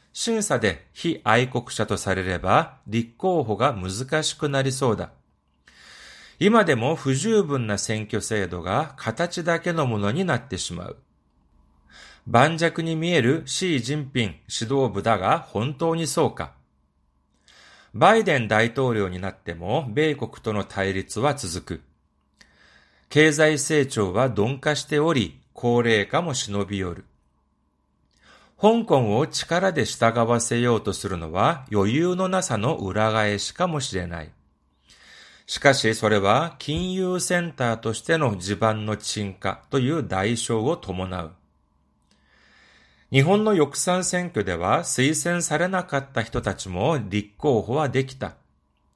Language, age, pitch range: Korean, 40-59, 95-150 Hz